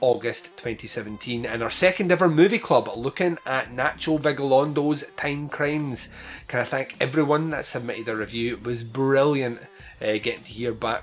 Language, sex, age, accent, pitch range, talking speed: English, male, 30-49, British, 110-140 Hz, 165 wpm